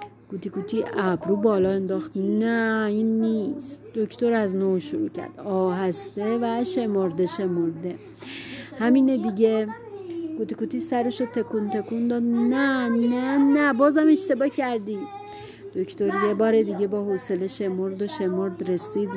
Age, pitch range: 40-59, 205-250 Hz